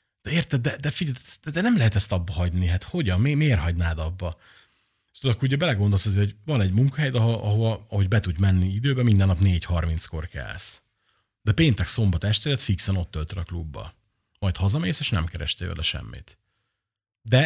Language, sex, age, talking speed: Hungarian, male, 30-49, 180 wpm